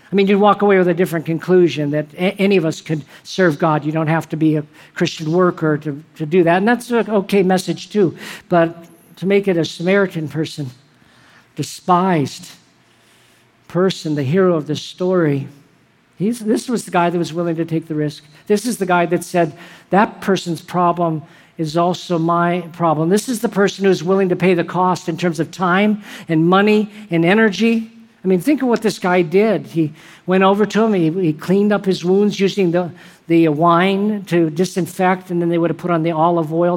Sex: male